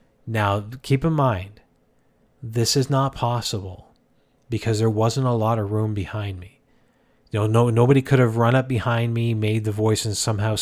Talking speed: 180 wpm